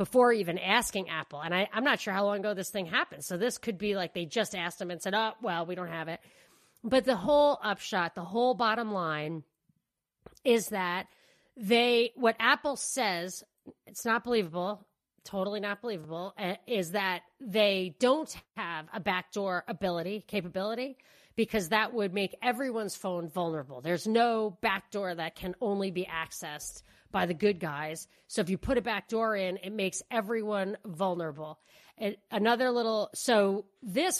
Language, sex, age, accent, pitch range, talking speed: English, female, 40-59, American, 185-230 Hz, 170 wpm